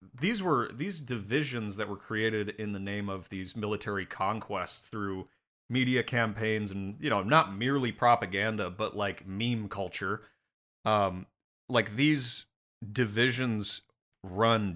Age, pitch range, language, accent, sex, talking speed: 30-49, 105-130 Hz, English, American, male, 130 wpm